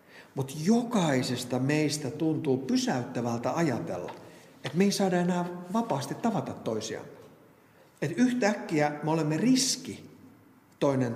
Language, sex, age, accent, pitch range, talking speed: Finnish, male, 50-69, native, 130-180 Hz, 110 wpm